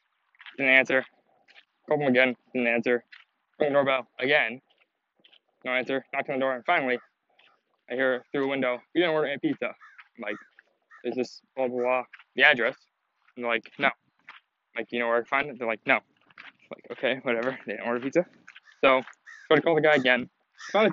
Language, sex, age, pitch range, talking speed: English, male, 20-39, 120-135 Hz, 205 wpm